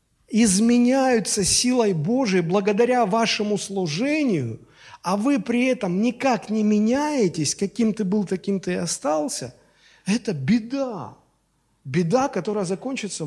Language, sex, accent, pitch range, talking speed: Russian, male, native, 170-235 Hz, 115 wpm